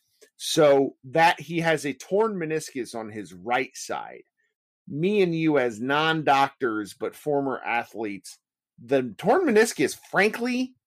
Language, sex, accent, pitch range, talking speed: English, male, American, 130-185 Hz, 125 wpm